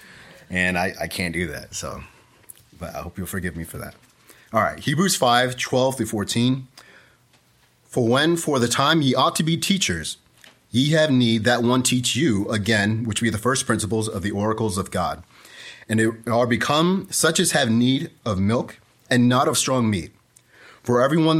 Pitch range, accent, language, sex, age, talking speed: 105-130 Hz, American, English, male, 30-49, 190 wpm